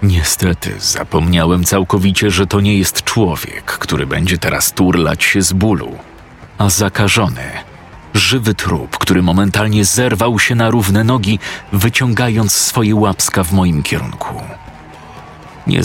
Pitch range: 85-105 Hz